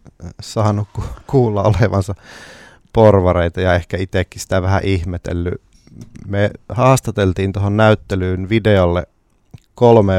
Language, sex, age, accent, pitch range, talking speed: Finnish, male, 30-49, native, 90-110 Hz, 100 wpm